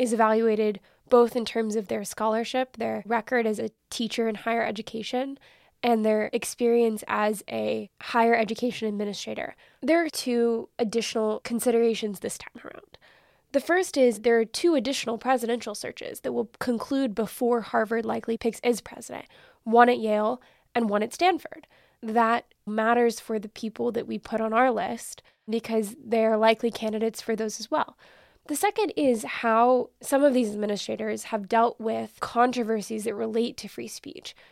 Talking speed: 165 wpm